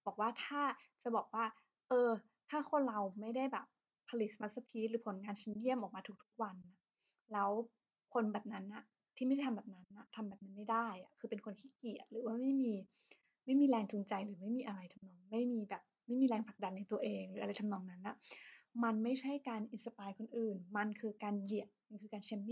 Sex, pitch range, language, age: female, 200-235 Hz, Thai, 20-39